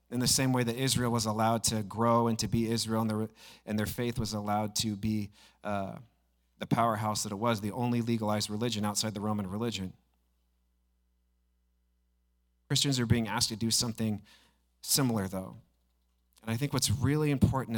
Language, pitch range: English, 95-120 Hz